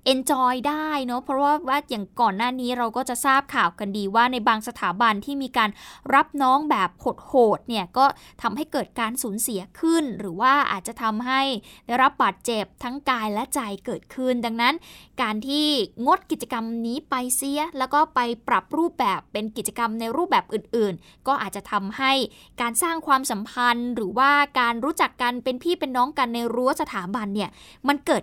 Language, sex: Thai, female